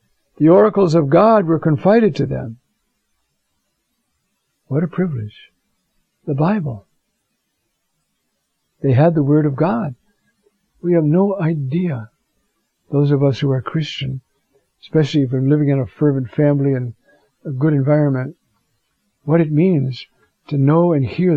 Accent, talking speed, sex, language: American, 135 wpm, male, English